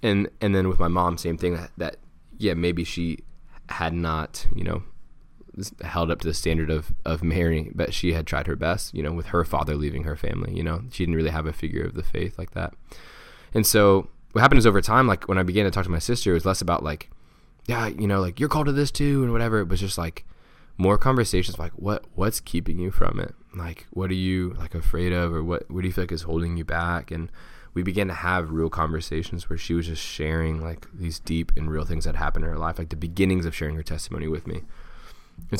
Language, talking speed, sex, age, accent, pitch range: English, 250 wpm, male, 20-39, American, 80-95 Hz